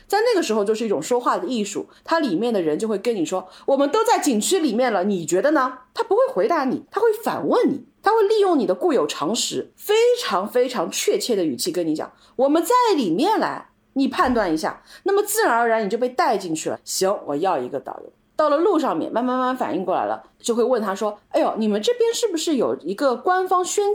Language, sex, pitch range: Chinese, female, 220-370 Hz